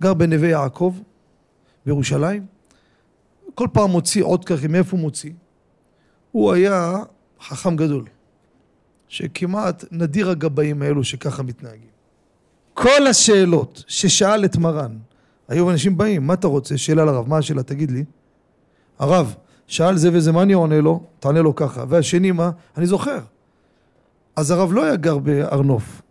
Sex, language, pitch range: male, Hebrew, 150-205 Hz